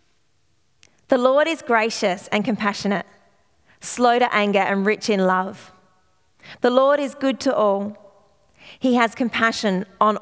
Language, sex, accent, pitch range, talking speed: English, female, Australian, 195-235 Hz, 135 wpm